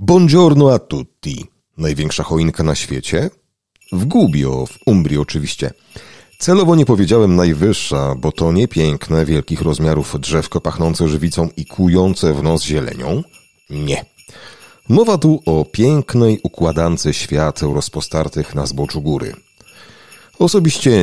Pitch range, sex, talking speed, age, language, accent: 75-95 Hz, male, 120 wpm, 40-59, Polish, native